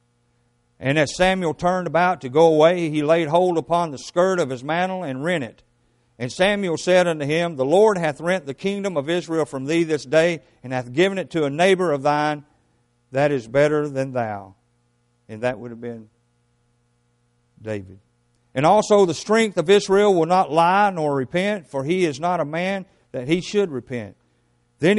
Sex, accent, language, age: male, American, English, 50-69